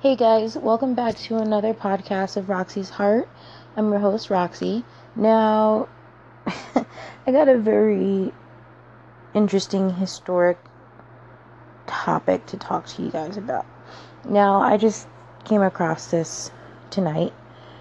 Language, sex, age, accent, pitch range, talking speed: English, female, 20-39, American, 170-205 Hz, 120 wpm